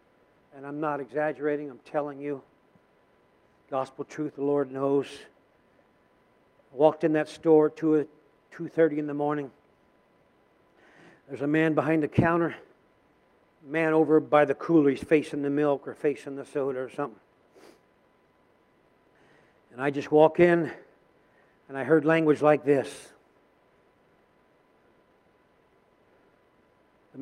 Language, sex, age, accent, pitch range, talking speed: English, male, 60-79, American, 150-190 Hz, 120 wpm